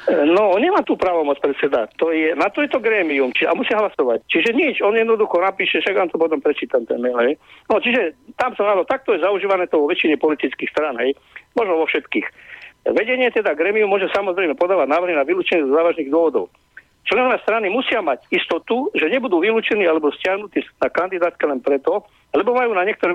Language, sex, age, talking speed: Slovak, male, 50-69, 200 wpm